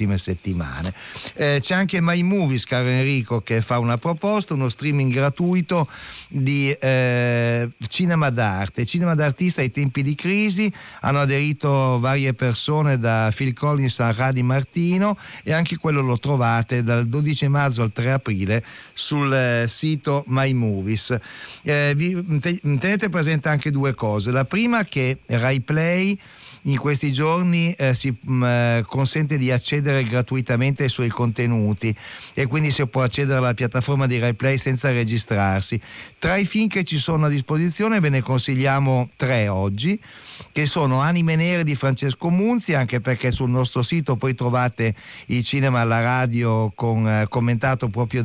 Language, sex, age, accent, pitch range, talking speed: Italian, male, 50-69, native, 120-150 Hz, 150 wpm